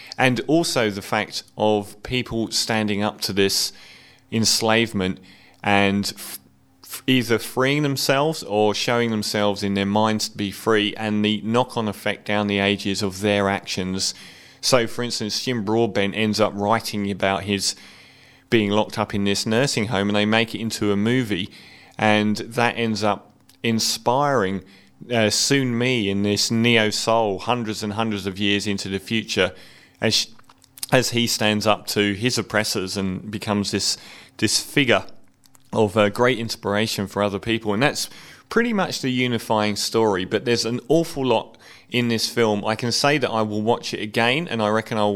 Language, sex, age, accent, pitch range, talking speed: English, male, 30-49, British, 100-120 Hz, 165 wpm